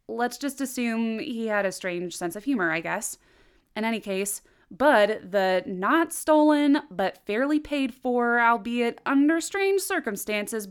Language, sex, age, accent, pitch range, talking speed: English, female, 20-39, American, 195-280 Hz, 100 wpm